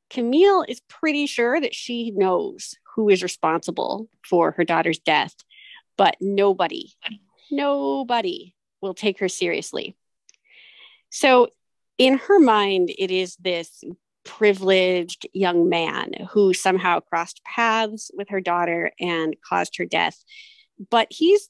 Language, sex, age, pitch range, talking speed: English, female, 30-49, 175-285 Hz, 125 wpm